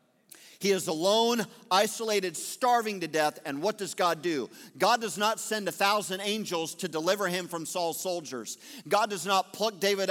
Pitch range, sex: 185-230 Hz, male